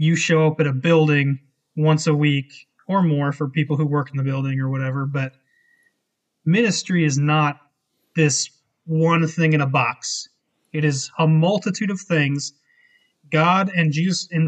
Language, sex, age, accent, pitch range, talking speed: English, male, 30-49, American, 150-185 Hz, 160 wpm